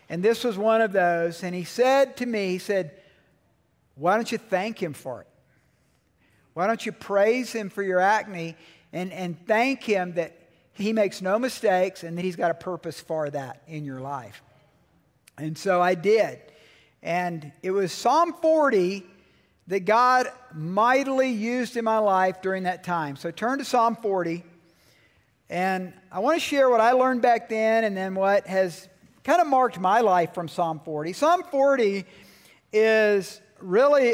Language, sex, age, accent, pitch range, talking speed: English, male, 50-69, American, 170-225 Hz, 170 wpm